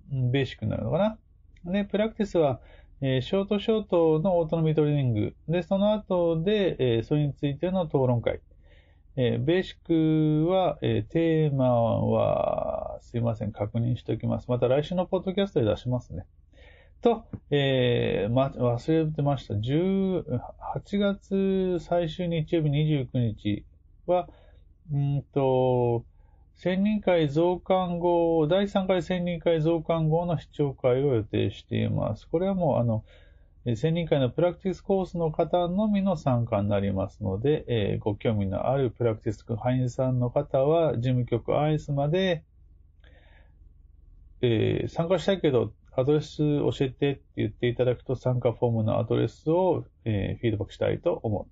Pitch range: 110-170 Hz